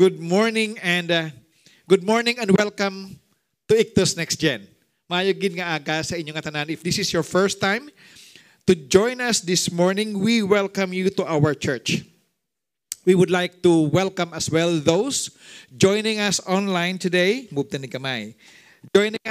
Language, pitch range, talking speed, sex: English, 150-185 Hz, 135 wpm, male